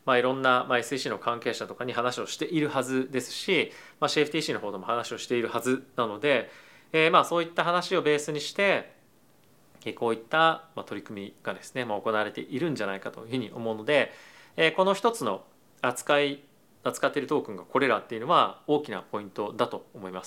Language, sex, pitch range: Japanese, male, 120-160 Hz